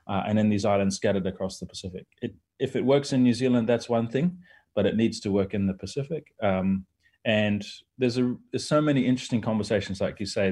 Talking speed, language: 210 wpm, English